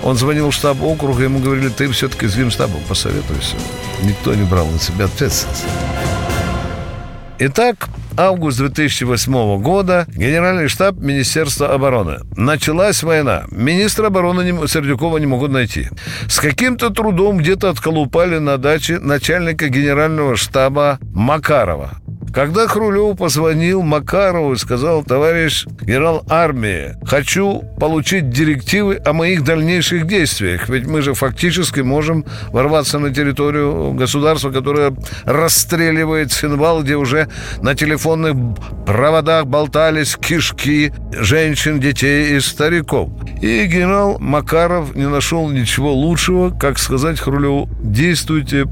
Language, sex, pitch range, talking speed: Russian, male, 125-160 Hz, 115 wpm